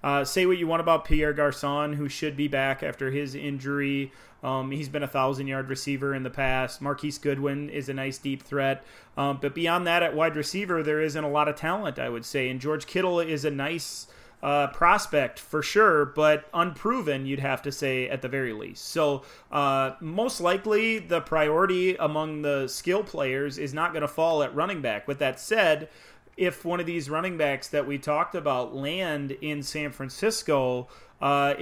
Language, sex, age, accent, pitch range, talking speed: English, male, 30-49, American, 135-160 Hz, 195 wpm